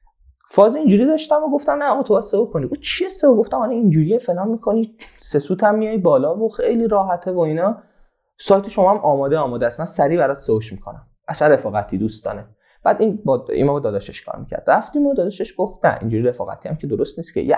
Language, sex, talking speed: Persian, male, 200 wpm